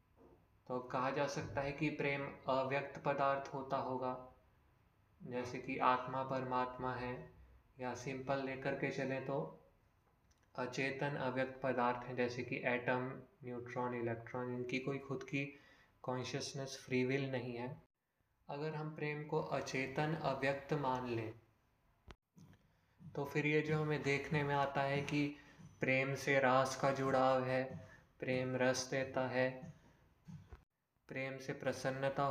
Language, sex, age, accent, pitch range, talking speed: Hindi, male, 20-39, native, 125-150 Hz, 130 wpm